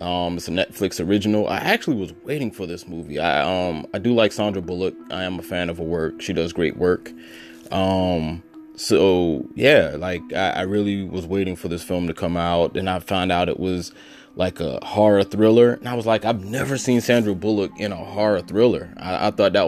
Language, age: English, 20-39